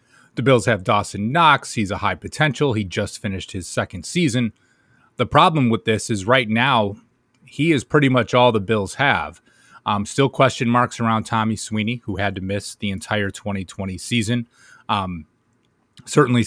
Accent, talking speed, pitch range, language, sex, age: American, 170 wpm, 100-120 Hz, English, male, 30-49